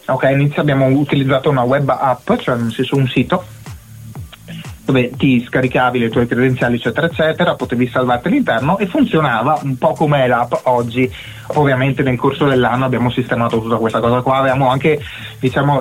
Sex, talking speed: male, 165 wpm